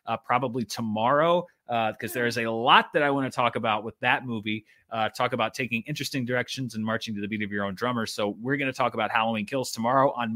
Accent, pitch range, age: American, 110-155 Hz, 30-49